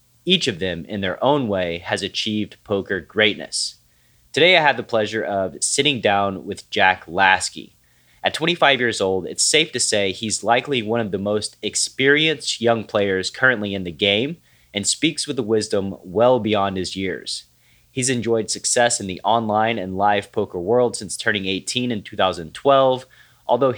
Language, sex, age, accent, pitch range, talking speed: English, male, 30-49, American, 100-120 Hz, 170 wpm